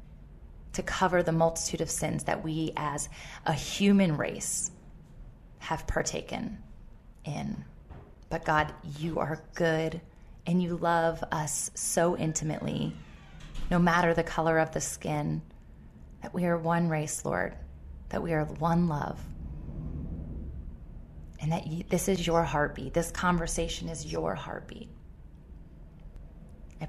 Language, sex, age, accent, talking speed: English, female, 20-39, American, 125 wpm